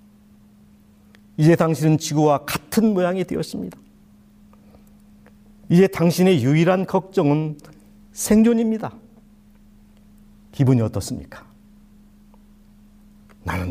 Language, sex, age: Korean, male, 50-69